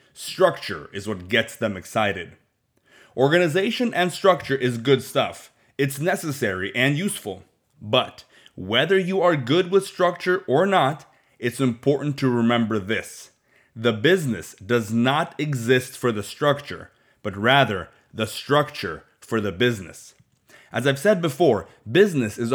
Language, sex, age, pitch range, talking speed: English, male, 30-49, 120-150 Hz, 135 wpm